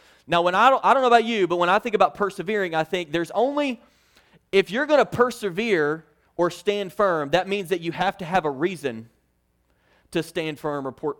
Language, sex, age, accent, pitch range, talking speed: English, male, 30-49, American, 165-215 Hz, 220 wpm